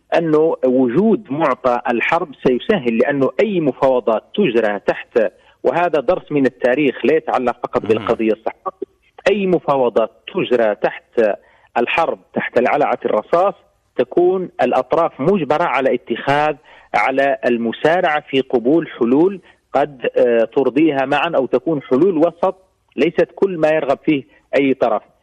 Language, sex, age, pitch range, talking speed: Arabic, male, 40-59, 130-180 Hz, 120 wpm